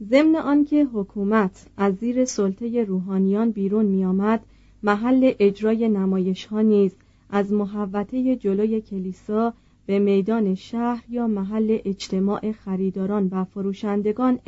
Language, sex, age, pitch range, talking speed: Persian, female, 30-49, 195-235 Hz, 115 wpm